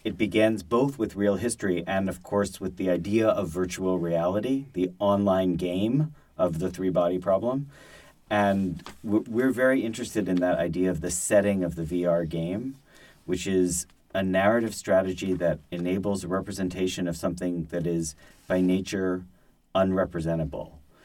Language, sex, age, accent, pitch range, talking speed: English, male, 40-59, American, 85-105 Hz, 150 wpm